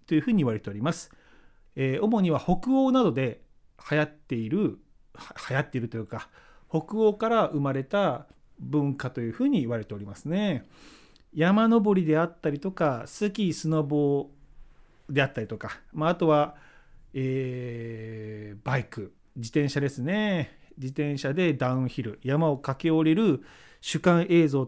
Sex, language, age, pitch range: male, Japanese, 40-59, 130-200 Hz